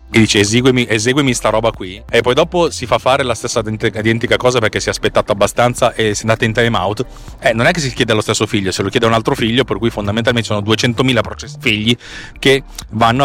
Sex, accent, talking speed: male, native, 240 wpm